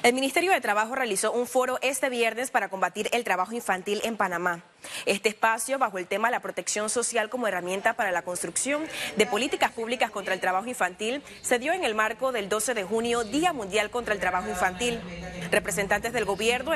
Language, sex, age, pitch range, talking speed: Spanish, female, 30-49, 195-240 Hz, 195 wpm